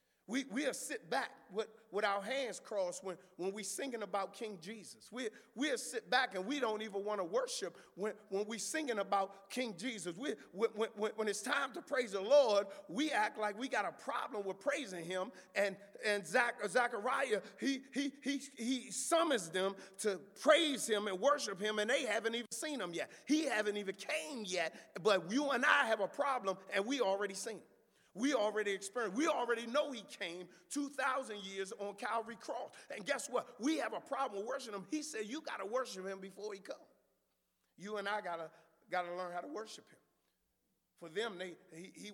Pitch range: 195-260 Hz